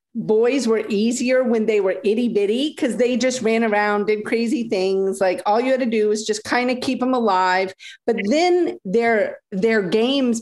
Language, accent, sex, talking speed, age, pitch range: English, American, female, 195 wpm, 40-59, 195-245 Hz